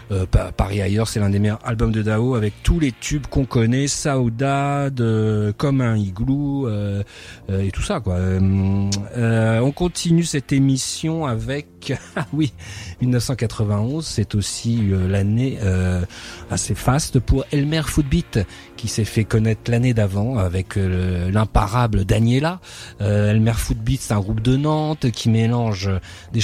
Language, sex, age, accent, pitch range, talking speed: French, male, 30-49, French, 105-135 Hz, 165 wpm